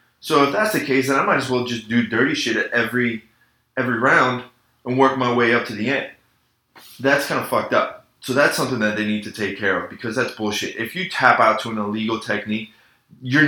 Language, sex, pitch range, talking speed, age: English, male, 105-125 Hz, 235 wpm, 20-39